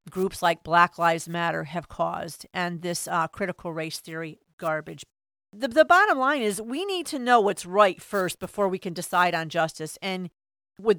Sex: female